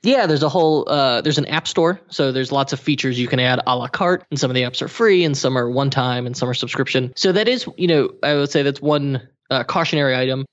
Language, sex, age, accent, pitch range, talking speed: English, male, 20-39, American, 125-155 Hz, 280 wpm